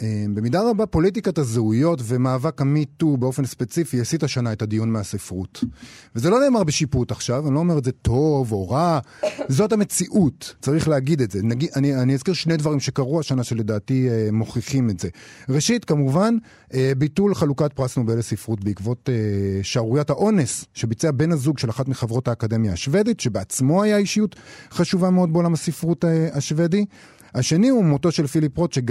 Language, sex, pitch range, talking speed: Hebrew, male, 120-165 Hz, 155 wpm